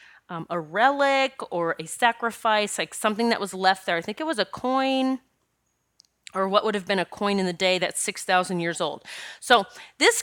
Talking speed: 200 wpm